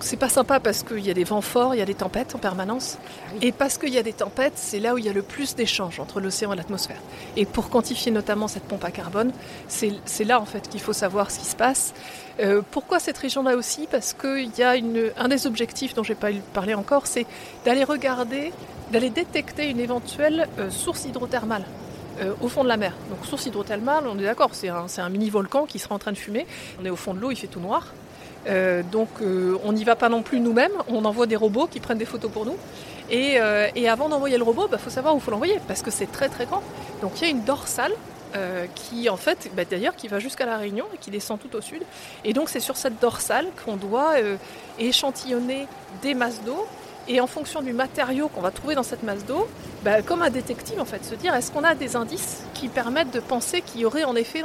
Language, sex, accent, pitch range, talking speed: French, female, French, 210-270 Hz, 255 wpm